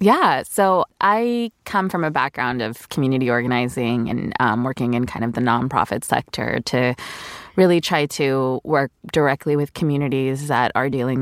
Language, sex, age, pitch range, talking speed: English, female, 20-39, 130-155 Hz, 160 wpm